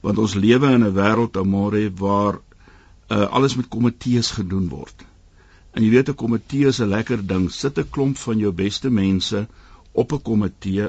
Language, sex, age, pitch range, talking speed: French, male, 60-79, 95-125 Hz, 170 wpm